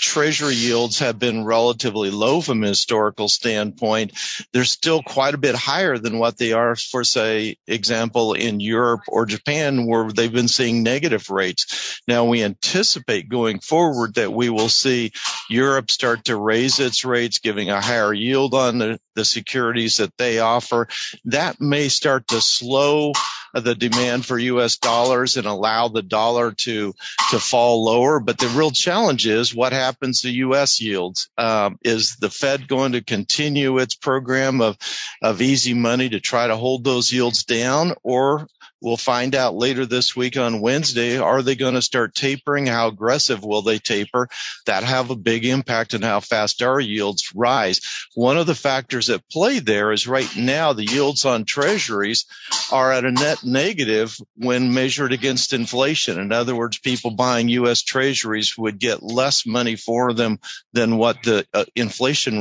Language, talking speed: English, 170 wpm